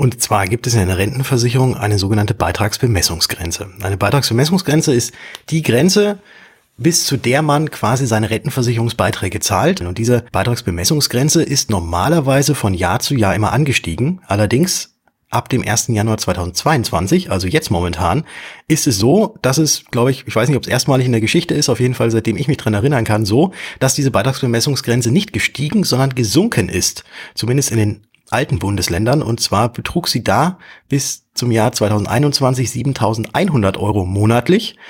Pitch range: 100-135 Hz